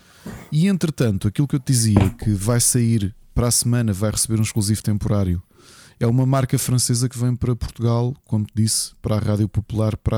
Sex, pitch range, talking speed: male, 105-125 Hz, 200 wpm